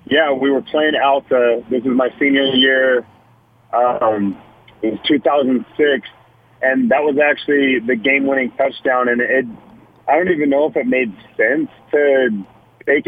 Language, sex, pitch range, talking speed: English, male, 120-140 Hz, 150 wpm